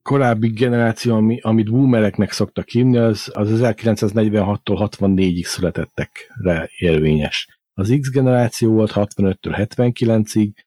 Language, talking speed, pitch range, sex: Hungarian, 105 wpm, 95-125 Hz, male